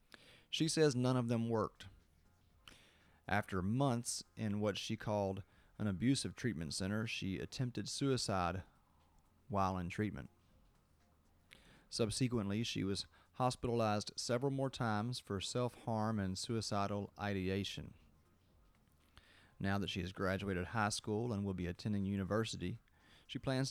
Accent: American